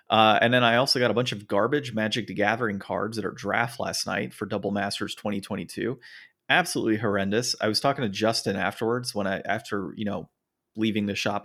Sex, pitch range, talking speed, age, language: male, 105-125 Hz, 205 wpm, 30-49, English